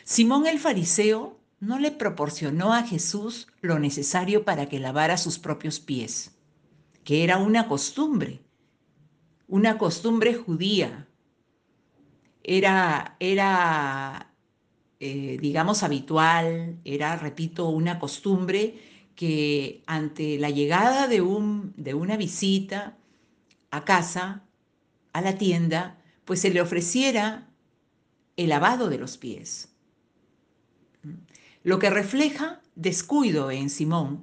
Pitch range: 150-210 Hz